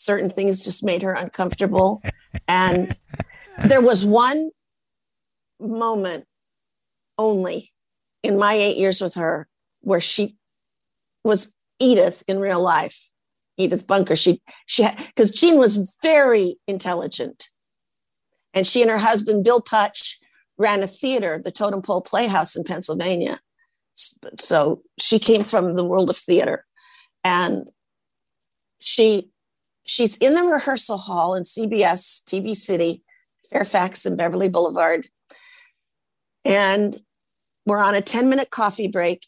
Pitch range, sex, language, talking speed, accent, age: 185-235 Hz, female, English, 125 wpm, American, 50-69